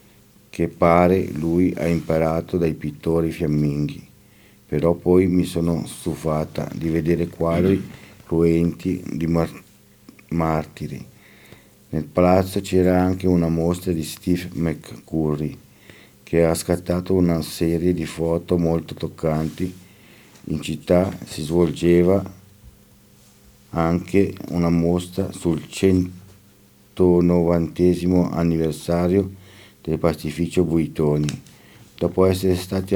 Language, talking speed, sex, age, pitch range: Italian, 95 wpm, male, 50-69, 80-90 Hz